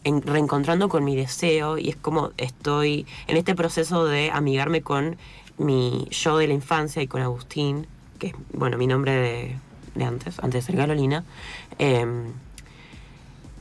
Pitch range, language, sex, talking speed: 135-175 Hz, Spanish, female, 160 wpm